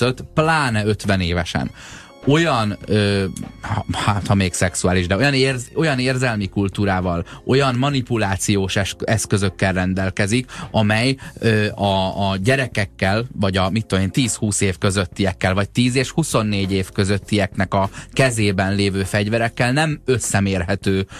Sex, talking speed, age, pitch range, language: male, 125 wpm, 20-39, 95-120 Hz, Hungarian